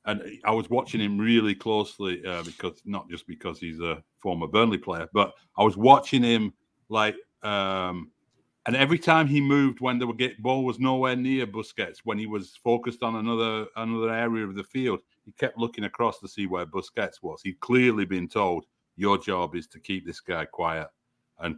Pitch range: 100-125 Hz